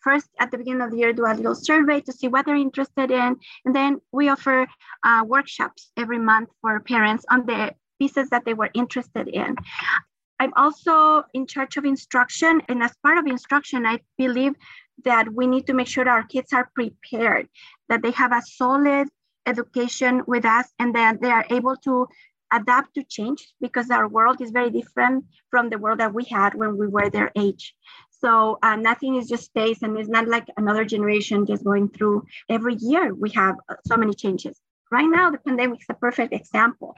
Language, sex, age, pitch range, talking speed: English, female, 30-49, 225-265 Hz, 200 wpm